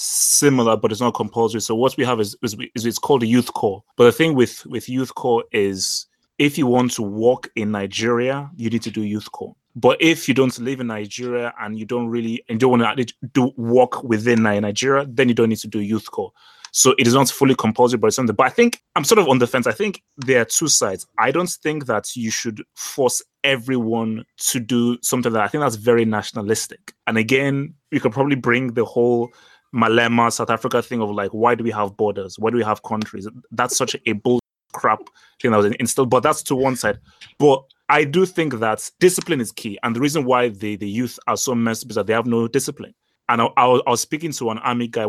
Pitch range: 110-130 Hz